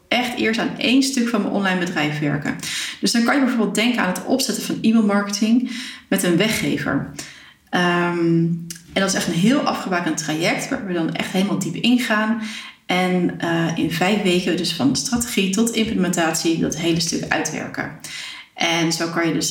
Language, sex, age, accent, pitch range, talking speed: Dutch, female, 30-49, Dutch, 170-225 Hz, 180 wpm